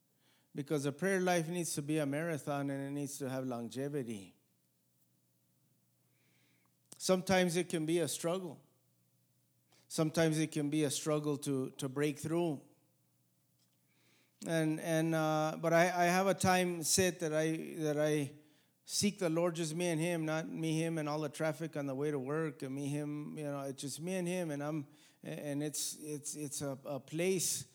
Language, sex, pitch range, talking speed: English, male, 135-170 Hz, 180 wpm